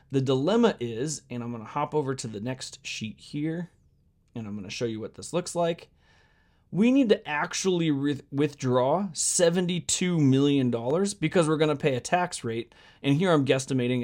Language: English